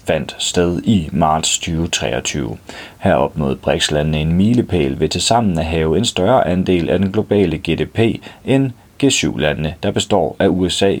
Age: 30-49